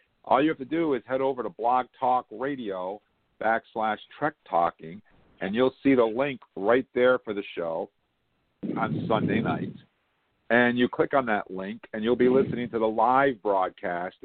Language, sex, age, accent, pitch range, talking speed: English, male, 50-69, American, 105-140 Hz, 175 wpm